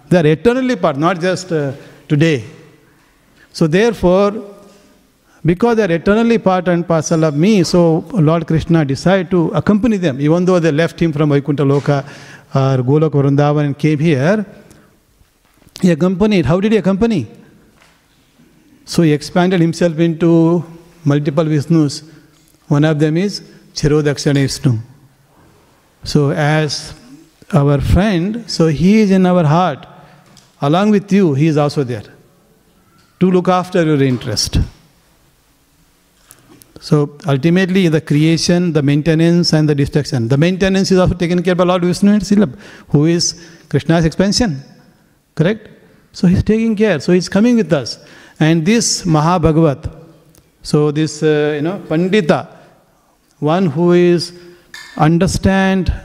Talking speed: 135 wpm